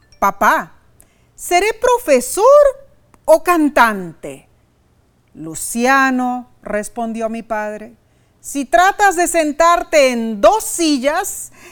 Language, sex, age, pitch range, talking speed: Spanish, female, 40-59, 205-310 Hz, 80 wpm